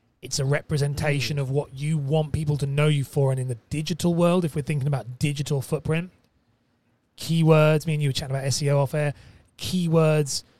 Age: 30-49